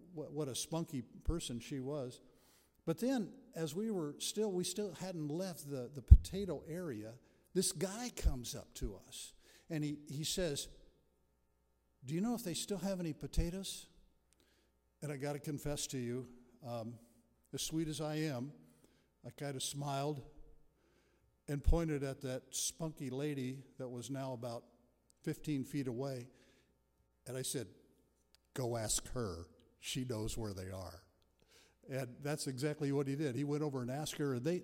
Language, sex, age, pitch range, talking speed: English, male, 60-79, 125-165 Hz, 160 wpm